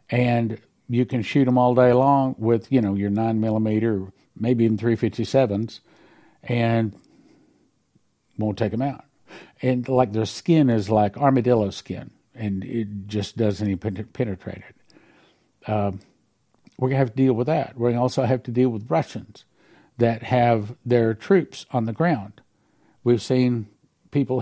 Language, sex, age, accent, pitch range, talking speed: English, male, 60-79, American, 115-130 Hz, 155 wpm